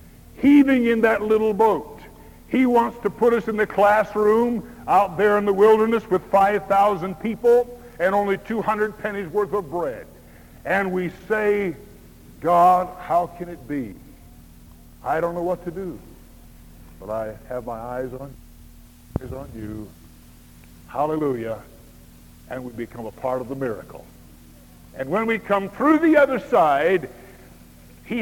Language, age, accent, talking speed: English, 60-79, American, 145 wpm